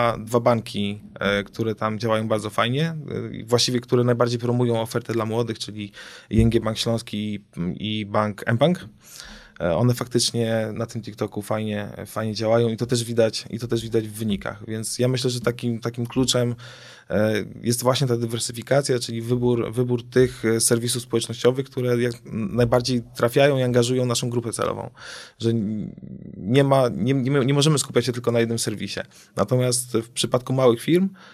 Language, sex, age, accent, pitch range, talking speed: Polish, male, 20-39, native, 110-125 Hz, 160 wpm